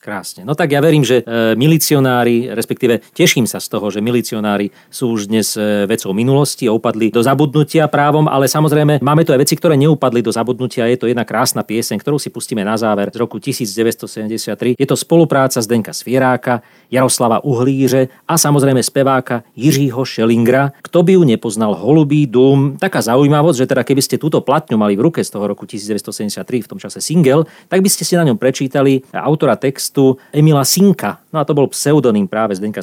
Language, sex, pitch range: Slovak, male, 115-145 Hz